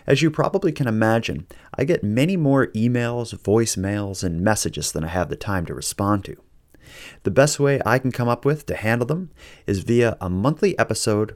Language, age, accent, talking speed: English, 30-49, American, 195 wpm